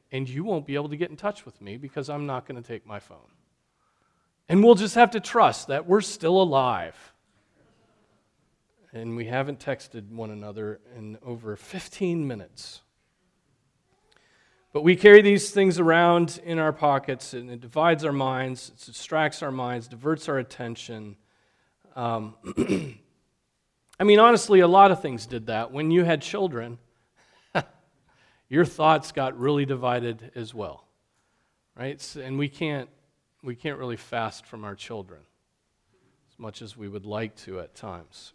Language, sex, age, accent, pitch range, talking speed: English, male, 40-59, American, 115-165 Hz, 160 wpm